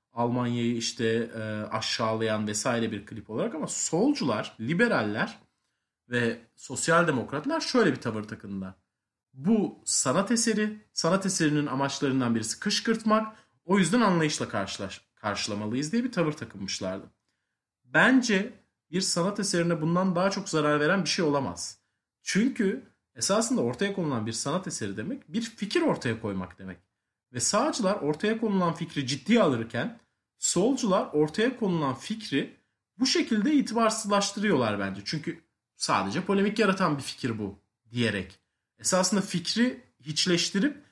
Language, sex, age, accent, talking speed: Turkish, male, 40-59, native, 125 wpm